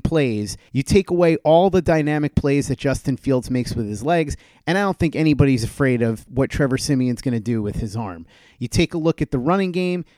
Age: 30-49